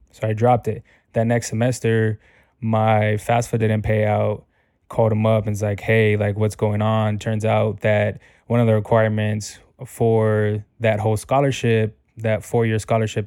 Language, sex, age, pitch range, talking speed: English, male, 20-39, 105-115 Hz, 165 wpm